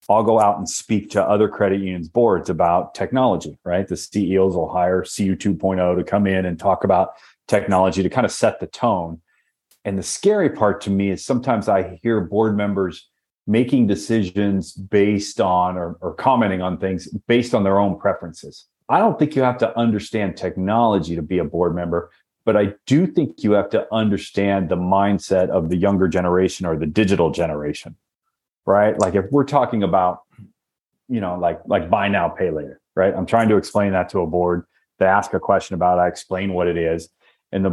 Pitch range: 90-110 Hz